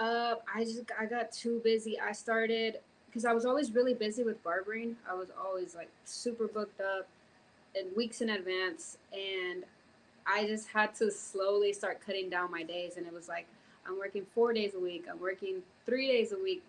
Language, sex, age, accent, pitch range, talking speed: English, female, 20-39, American, 190-225 Hz, 200 wpm